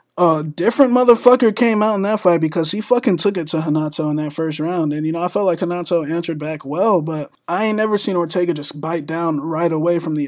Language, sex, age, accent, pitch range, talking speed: English, male, 20-39, American, 145-185 Hz, 245 wpm